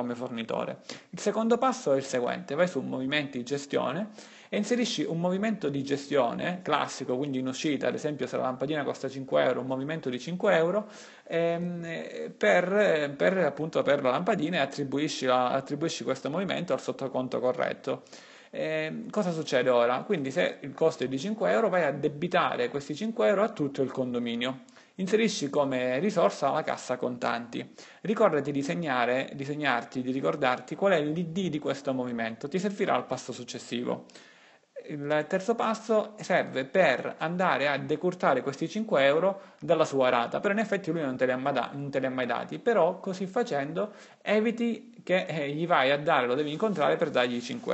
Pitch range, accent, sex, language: 135-190 Hz, native, male, Italian